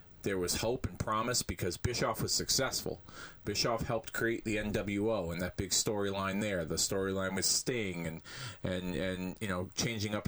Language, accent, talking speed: English, American, 175 wpm